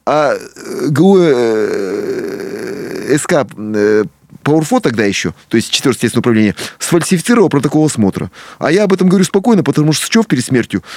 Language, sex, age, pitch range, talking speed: Russian, male, 30-49, 115-165 Hz, 155 wpm